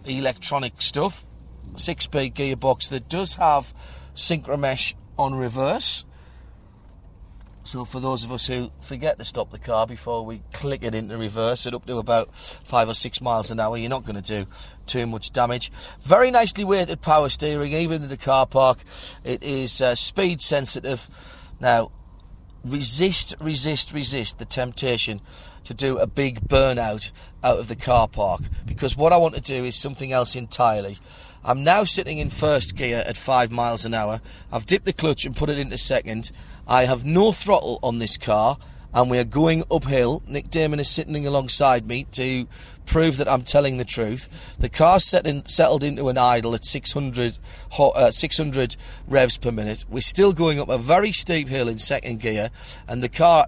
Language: English